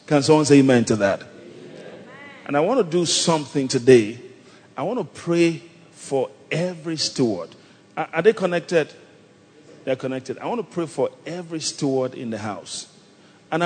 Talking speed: 160 wpm